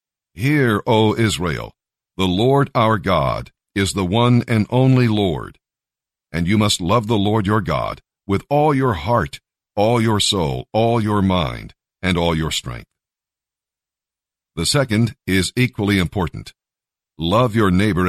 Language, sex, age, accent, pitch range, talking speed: English, male, 50-69, American, 90-115 Hz, 145 wpm